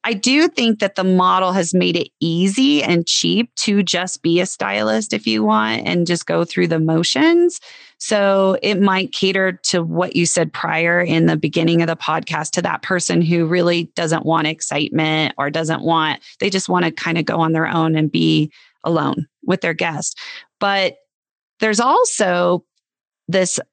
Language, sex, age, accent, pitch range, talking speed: English, female, 30-49, American, 165-190 Hz, 180 wpm